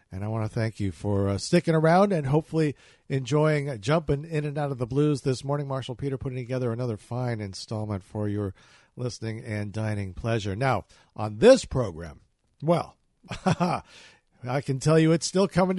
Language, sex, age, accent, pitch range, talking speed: English, male, 50-69, American, 120-165 Hz, 180 wpm